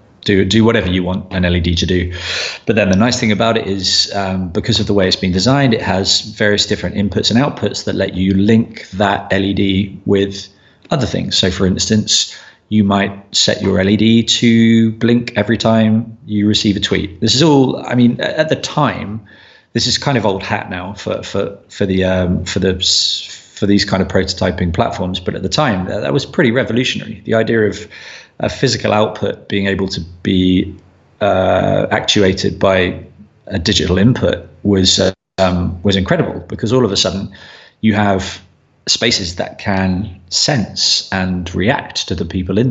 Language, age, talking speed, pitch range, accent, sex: English, 20-39, 185 wpm, 95-110 Hz, British, male